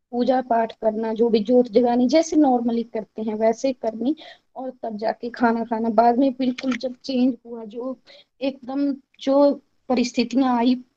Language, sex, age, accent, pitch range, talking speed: Hindi, female, 20-39, native, 240-285 Hz, 140 wpm